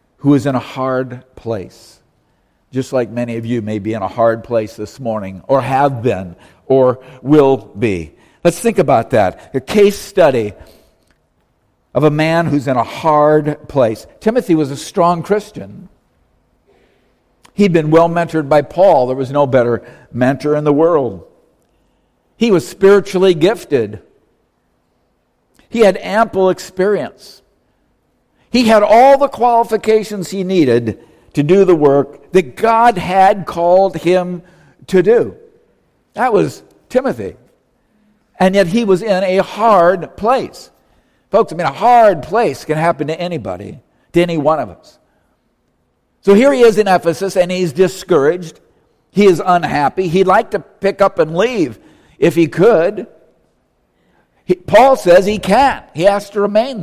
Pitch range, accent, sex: 135-200 Hz, American, male